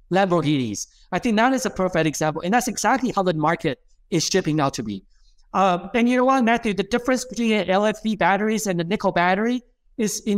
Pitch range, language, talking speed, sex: 170-210 Hz, English, 210 wpm, male